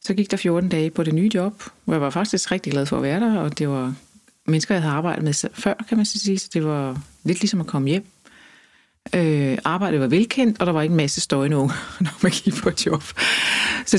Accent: native